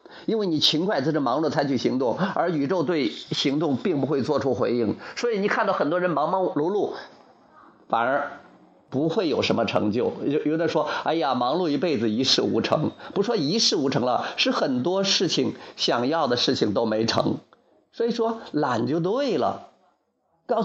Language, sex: Chinese, male